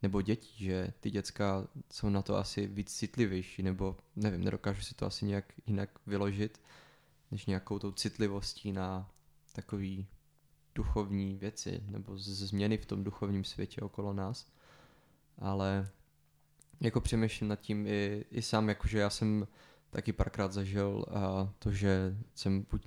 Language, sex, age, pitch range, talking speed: English, male, 20-39, 95-105 Hz, 145 wpm